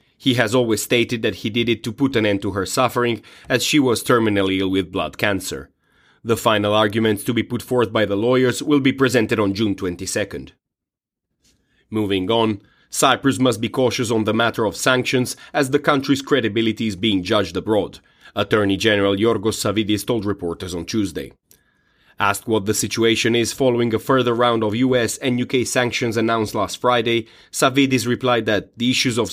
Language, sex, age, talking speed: English, male, 30-49, 180 wpm